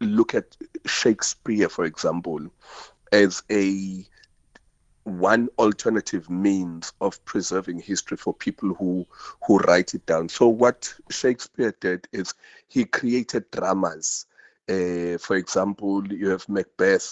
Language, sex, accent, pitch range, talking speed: English, male, South African, 90-105 Hz, 120 wpm